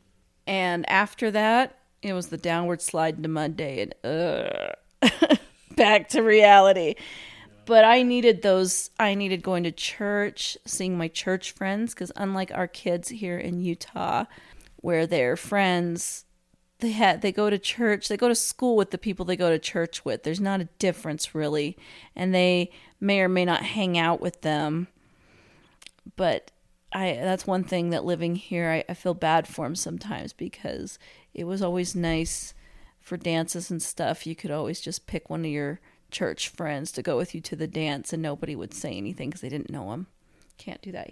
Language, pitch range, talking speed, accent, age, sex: English, 165-205 Hz, 180 wpm, American, 40-59, female